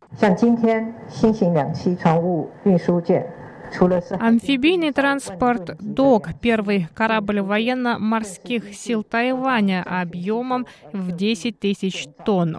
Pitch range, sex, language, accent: 175-230 Hz, female, Russian, native